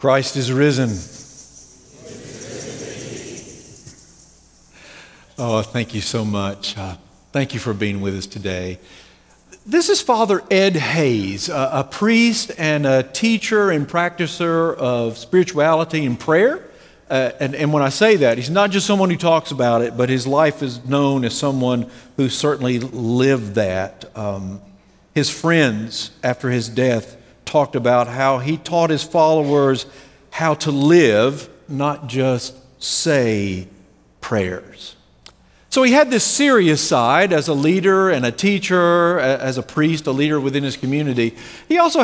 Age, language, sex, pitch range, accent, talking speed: 50-69, English, male, 120-170 Hz, American, 145 wpm